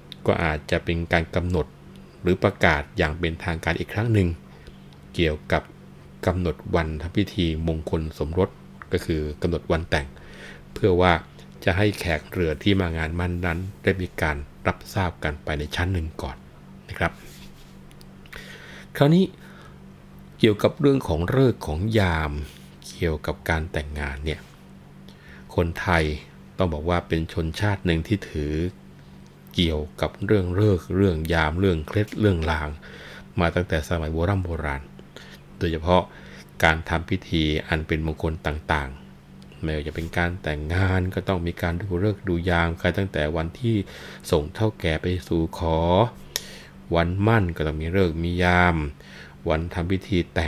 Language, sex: Thai, male